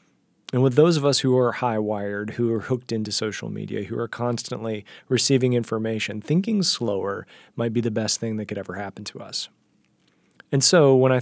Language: English